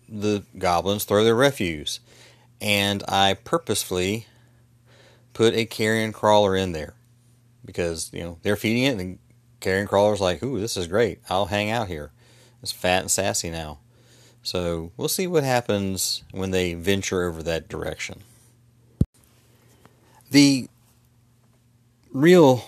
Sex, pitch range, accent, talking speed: male, 95-120 Hz, American, 135 wpm